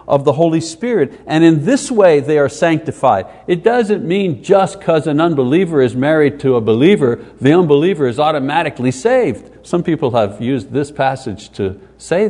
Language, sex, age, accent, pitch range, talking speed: English, male, 60-79, American, 135-180 Hz, 175 wpm